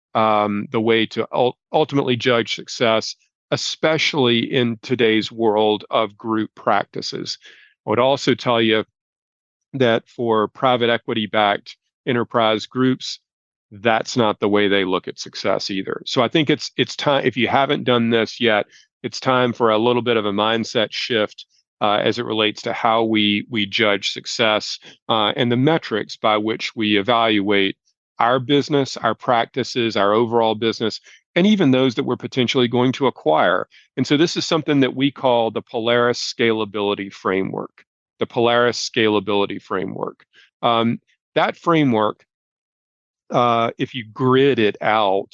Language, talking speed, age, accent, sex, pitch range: English, 155 wpm, 40-59, American, male, 110-130 Hz